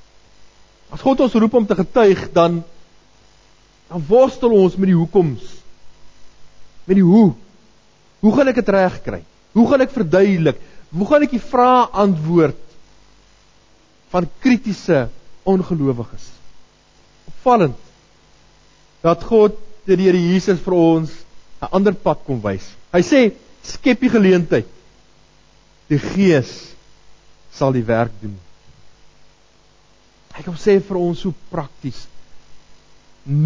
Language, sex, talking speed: English, male, 120 wpm